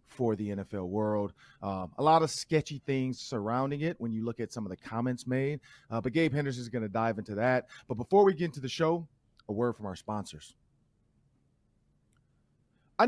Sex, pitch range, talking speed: male, 115-160 Hz, 200 wpm